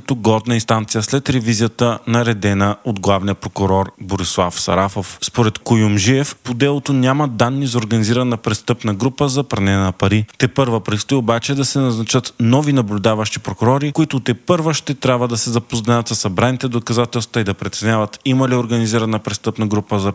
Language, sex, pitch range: Bulgarian, male, 105-125 Hz